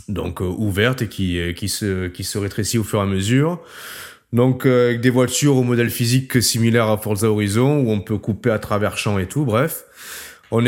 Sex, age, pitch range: male, 20-39, 105-130 Hz